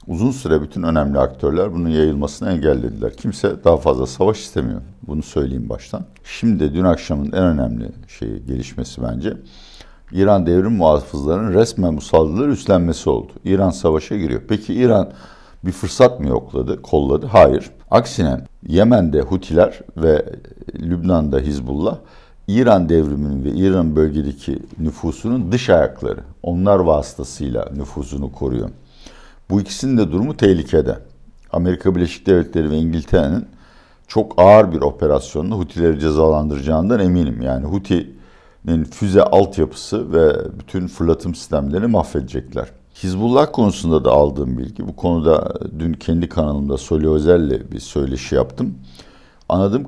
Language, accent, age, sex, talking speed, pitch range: Turkish, native, 60-79, male, 125 wpm, 70-90 Hz